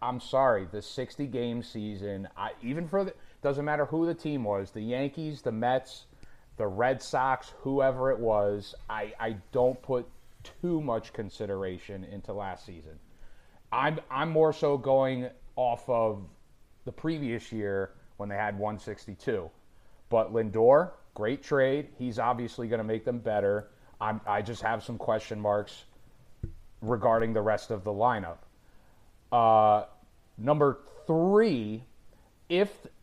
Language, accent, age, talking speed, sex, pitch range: English, American, 30-49, 145 wpm, male, 105-135 Hz